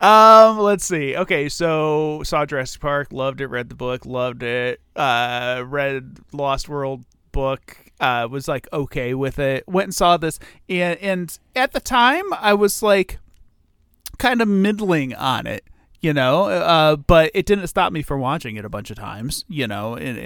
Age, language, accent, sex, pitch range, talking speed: 30-49, English, American, male, 115-165 Hz, 180 wpm